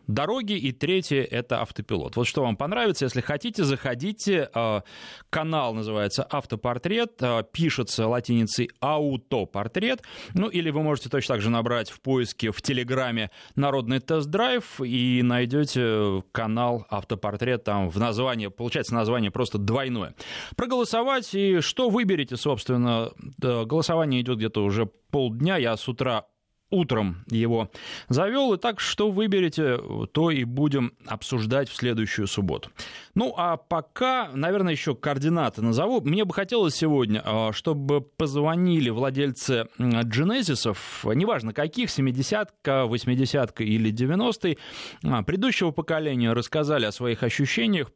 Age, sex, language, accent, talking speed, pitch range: 20-39, male, Russian, native, 125 wpm, 115-160 Hz